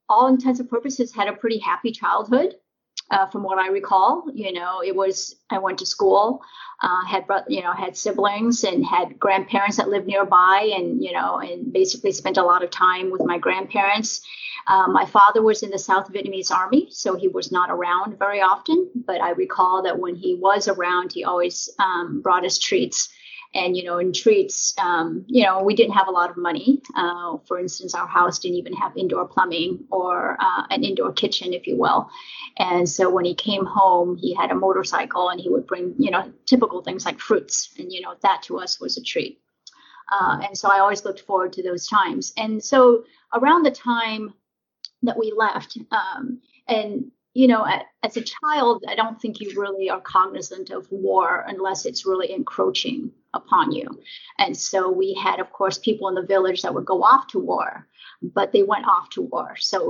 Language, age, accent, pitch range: English, 30-49, American, 185-255 Hz